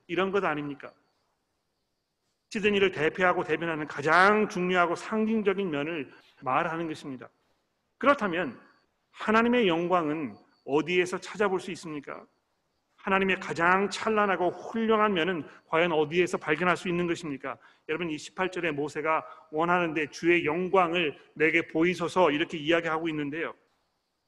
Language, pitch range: Korean, 150-175 Hz